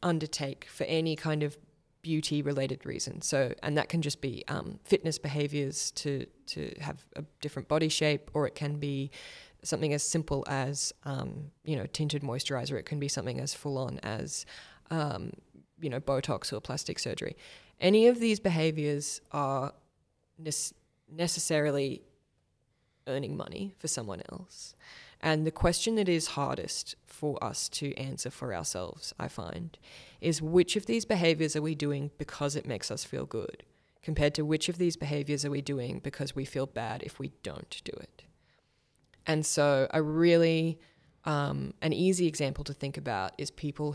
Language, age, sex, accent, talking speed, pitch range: English, 20-39, female, Australian, 165 wpm, 135-160 Hz